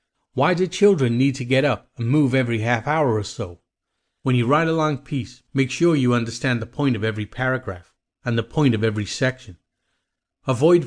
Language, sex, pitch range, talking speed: English, male, 115-150 Hz, 200 wpm